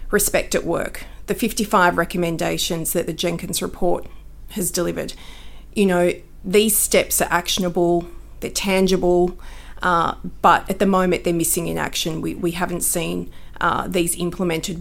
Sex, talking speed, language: female, 145 wpm, English